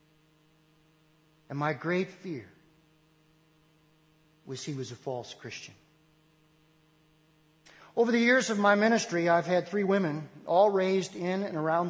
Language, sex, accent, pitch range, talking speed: English, male, American, 155-200 Hz, 125 wpm